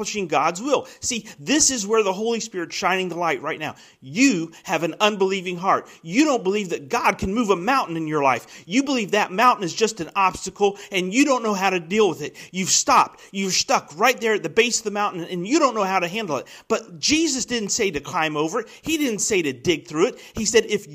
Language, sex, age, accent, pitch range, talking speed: English, male, 40-59, American, 160-215 Hz, 245 wpm